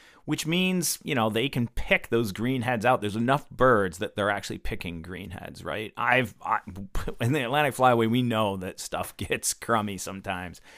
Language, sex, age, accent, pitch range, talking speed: English, male, 40-59, American, 95-130 Hz, 185 wpm